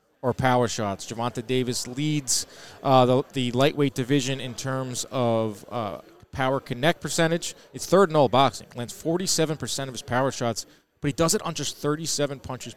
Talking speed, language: 185 wpm, English